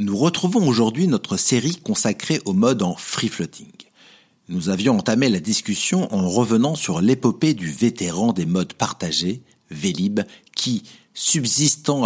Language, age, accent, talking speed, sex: French, 60-79, French, 135 wpm, male